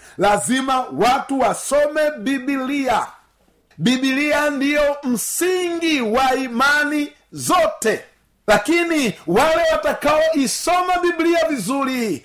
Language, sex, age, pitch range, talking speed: Swahili, male, 50-69, 245-305 Hz, 80 wpm